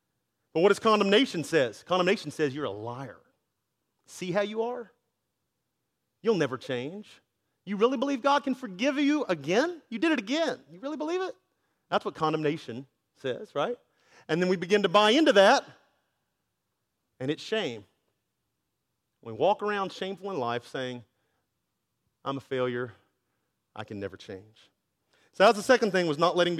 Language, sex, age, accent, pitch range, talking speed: English, male, 40-59, American, 135-205 Hz, 160 wpm